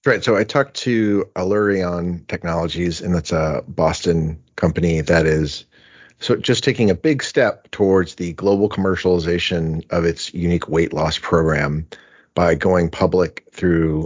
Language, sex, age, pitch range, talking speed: English, male, 40-59, 80-95 Hz, 145 wpm